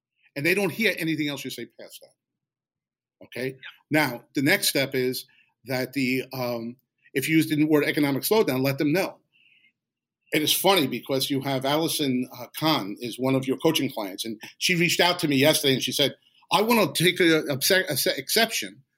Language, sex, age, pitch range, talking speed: English, male, 50-69, 130-160 Hz, 190 wpm